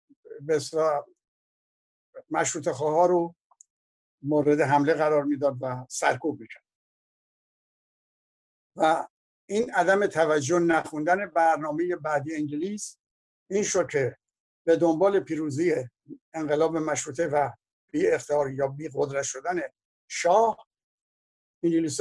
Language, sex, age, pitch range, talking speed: Persian, male, 60-79, 145-180 Hz, 100 wpm